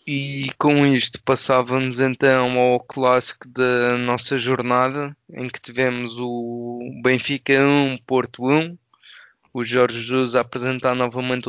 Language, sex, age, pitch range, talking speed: Portuguese, male, 20-39, 120-130 Hz, 125 wpm